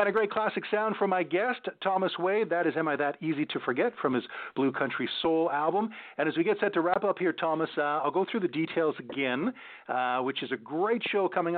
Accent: American